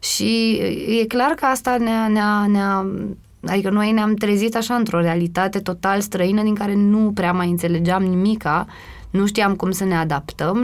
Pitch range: 170-215 Hz